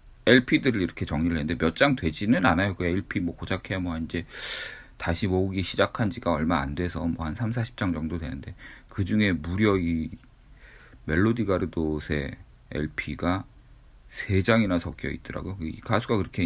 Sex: male